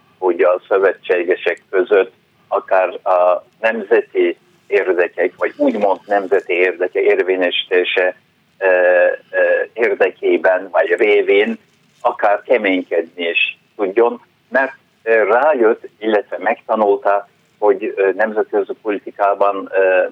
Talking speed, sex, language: 80 wpm, male, Hungarian